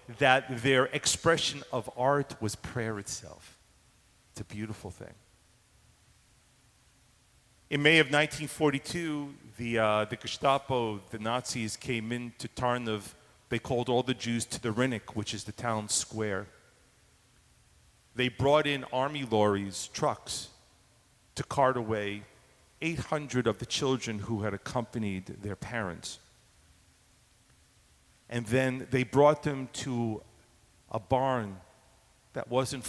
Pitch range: 105-125 Hz